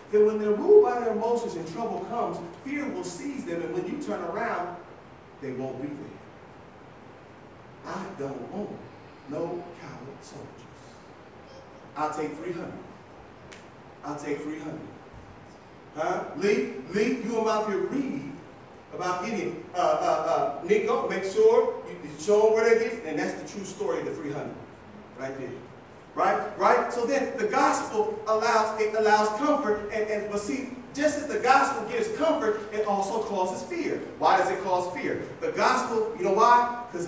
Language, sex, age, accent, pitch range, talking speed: English, male, 40-59, American, 175-260 Hz, 165 wpm